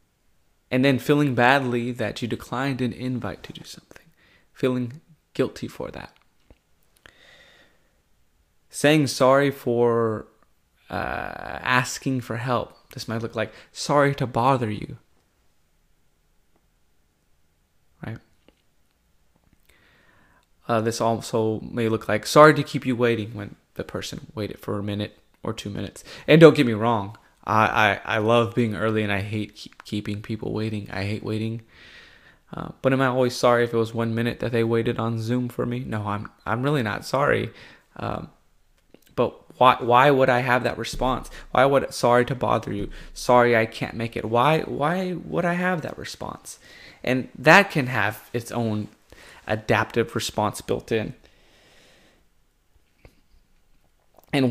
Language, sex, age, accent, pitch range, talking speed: English, male, 20-39, American, 110-130 Hz, 150 wpm